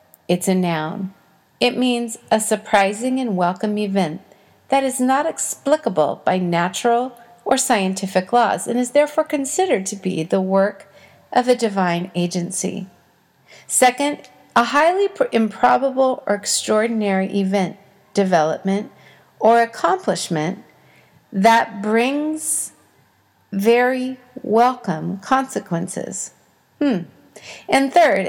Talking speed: 105 wpm